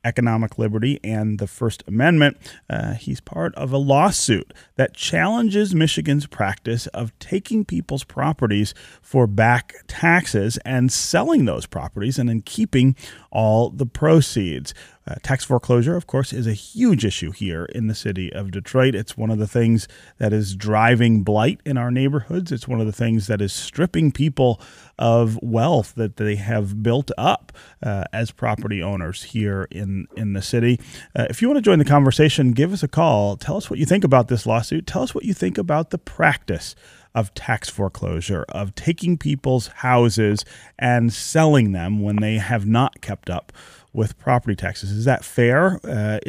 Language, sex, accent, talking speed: English, male, American, 175 wpm